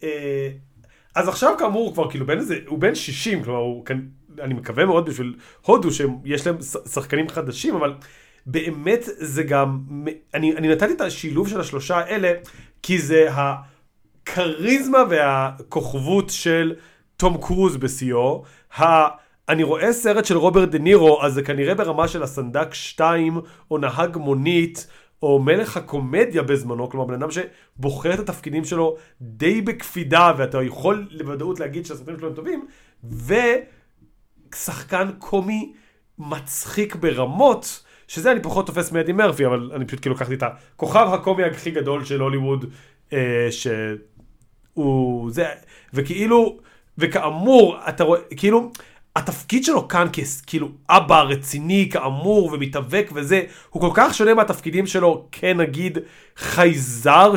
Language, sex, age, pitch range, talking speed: Hebrew, male, 30-49, 140-180 Hz, 135 wpm